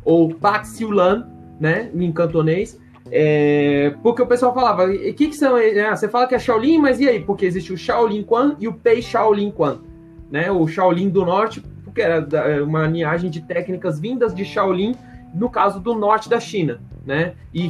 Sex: male